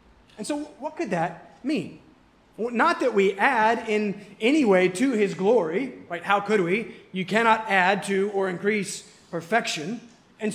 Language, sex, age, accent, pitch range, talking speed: English, male, 30-49, American, 185-255 Hz, 160 wpm